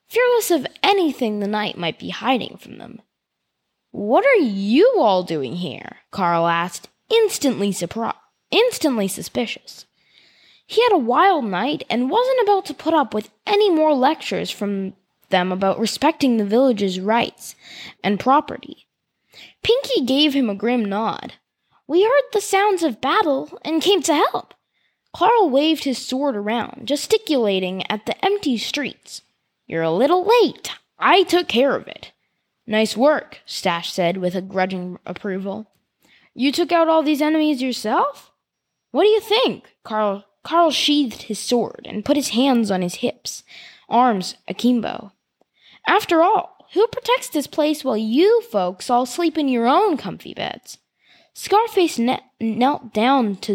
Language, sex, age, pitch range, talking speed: English, female, 10-29, 210-330 Hz, 150 wpm